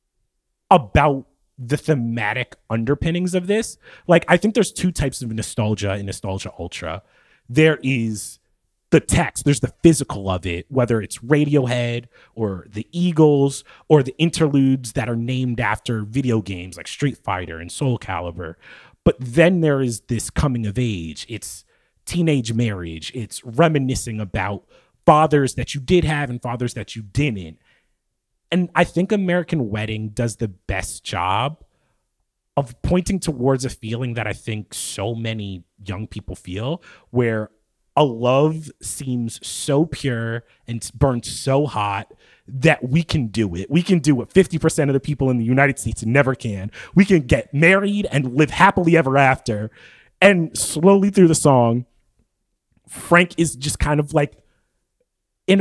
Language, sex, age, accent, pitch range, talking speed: English, male, 30-49, American, 110-150 Hz, 155 wpm